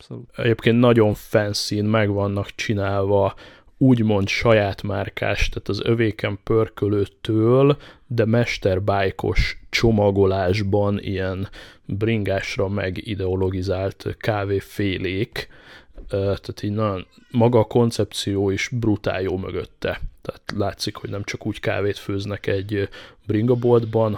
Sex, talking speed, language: male, 95 wpm, Hungarian